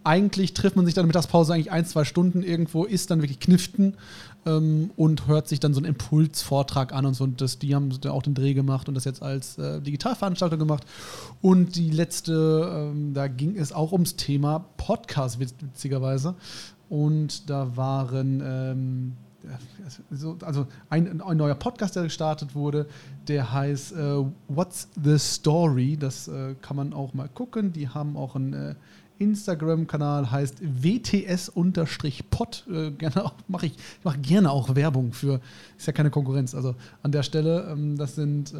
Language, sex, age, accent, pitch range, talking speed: German, male, 30-49, German, 140-170 Hz, 165 wpm